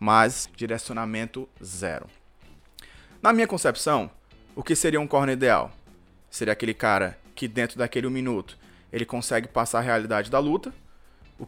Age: 20-39